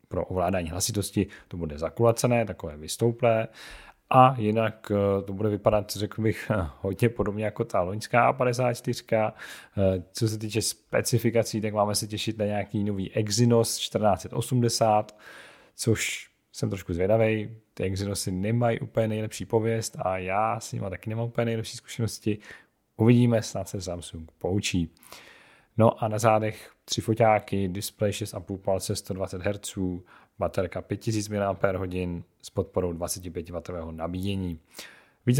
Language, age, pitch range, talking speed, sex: Czech, 30-49, 95-115 Hz, 130 wpm, male